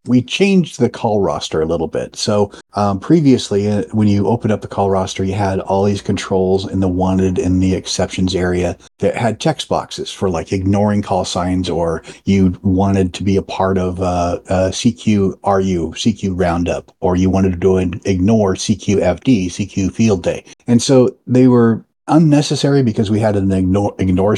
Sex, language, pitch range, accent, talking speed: male, English, 95-115 Hz, American, 180 wpm